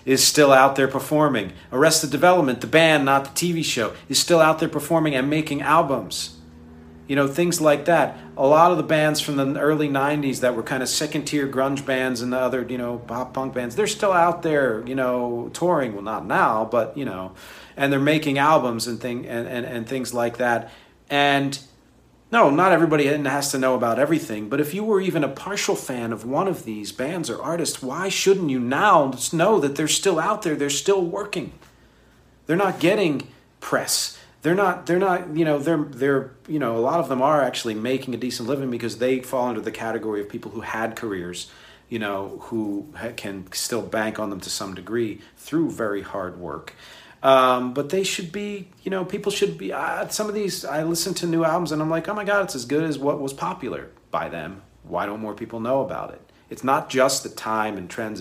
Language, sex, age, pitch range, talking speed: English, male, 40-59, 120-160 Hz, 215 wpm